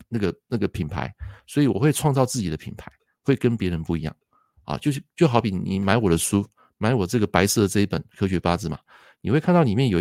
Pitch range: 90-120 Hz